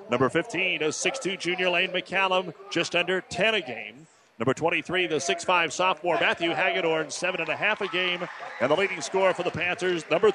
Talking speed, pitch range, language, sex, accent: 190 wpm, 145-185 Hz, English, male, American